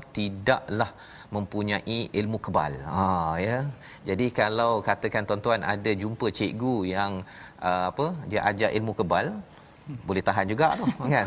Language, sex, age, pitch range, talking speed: Malayalam, male, 30-49, 100-120 Hz, 140 wpm